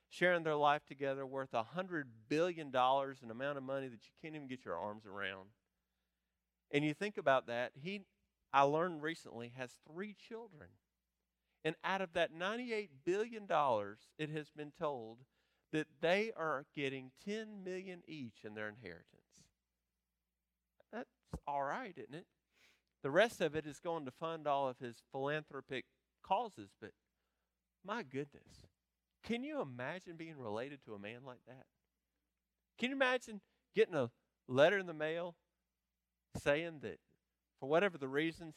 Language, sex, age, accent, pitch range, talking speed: English, male, 40-59, American, 100-155 Hz, 155 wpm